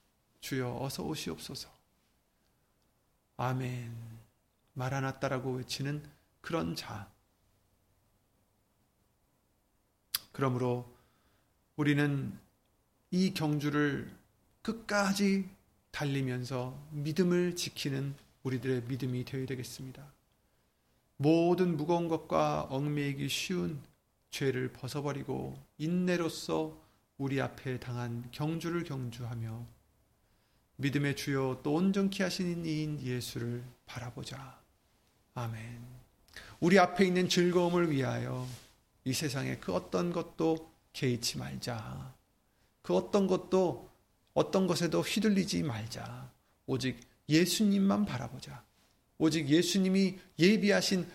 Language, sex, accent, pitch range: Korean, male, native, 120-175 Hz